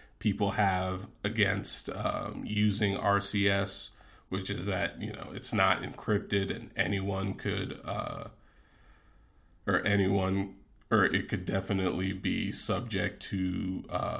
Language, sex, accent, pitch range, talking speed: English, male, American, 100-115 Hz, 120 wpm